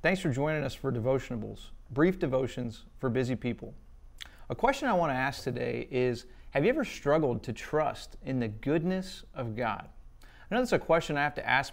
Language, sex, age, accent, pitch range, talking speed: English, male, 30-49, American, 120-155 Hz, 200 wpm